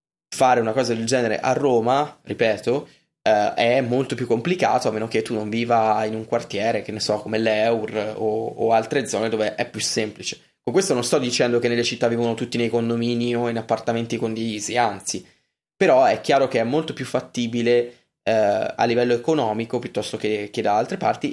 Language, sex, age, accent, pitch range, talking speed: Italian, male, 20-39, native, 110-125 Hz, 195 wpm